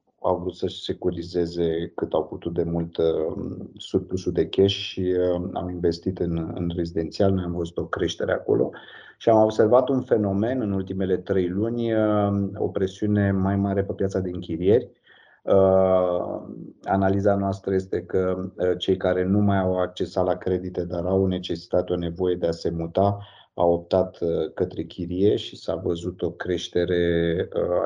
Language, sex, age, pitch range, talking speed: Romanian, male, 30-49, 85-95 Hz, 165 wpm